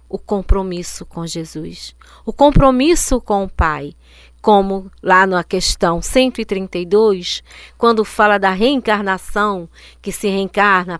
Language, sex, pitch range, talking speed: Portuguese, female, 180-265 Hz, 115 wpm